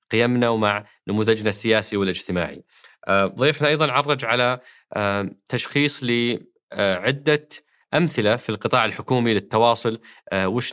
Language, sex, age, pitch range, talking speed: Arabic, male, 20-39, 105-125 Hz, 95 wpm